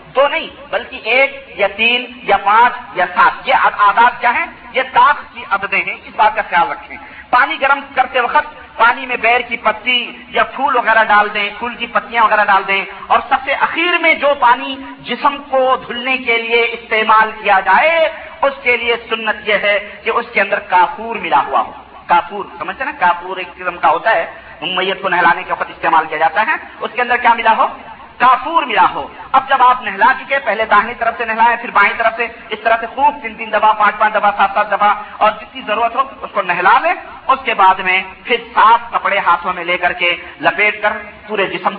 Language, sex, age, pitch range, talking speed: Urdu, male, 50-69, 195-245 Hz, 205 wpm